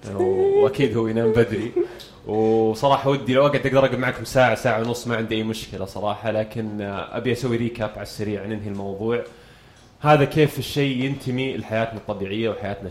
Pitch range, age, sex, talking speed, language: 110-145 Hz, 20-39, male, 160 wpm, Arabic